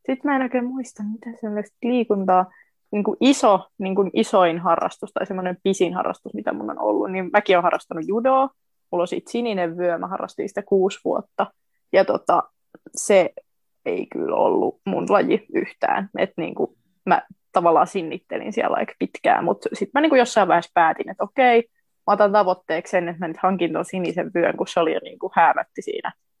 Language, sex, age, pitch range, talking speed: Finnish, female, 20-39, 185-240 Hz, 180 wpm